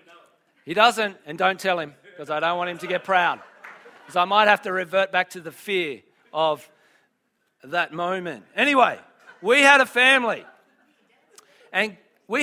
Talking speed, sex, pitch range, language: 165 wpm, male, 185-240 Hz, English